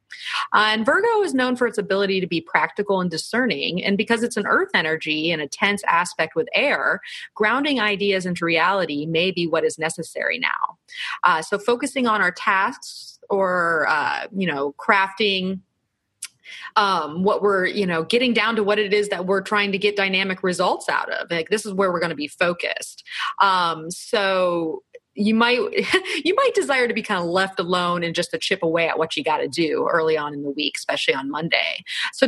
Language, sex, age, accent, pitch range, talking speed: English, female, 30-49, American, 170-230 Hz, 200 wpm